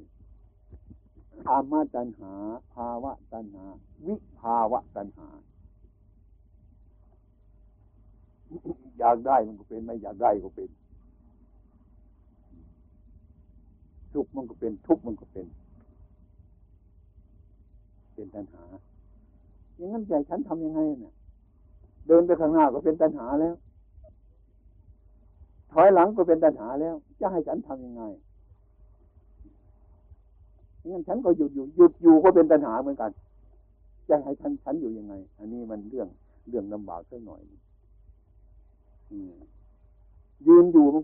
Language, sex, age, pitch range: Thai, male, 60-79, 85-135 Hz